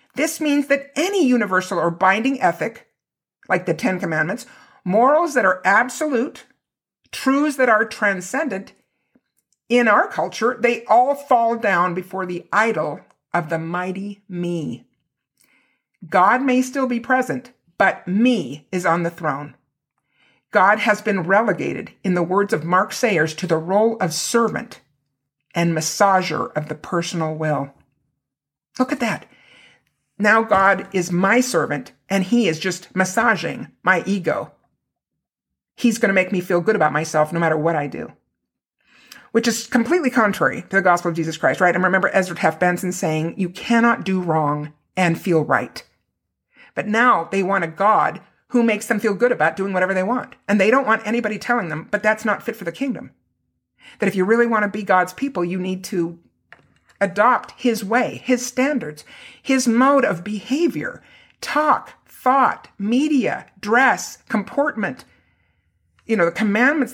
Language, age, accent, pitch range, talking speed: English, 50-69, American, 175-240 Hz, 160 wpm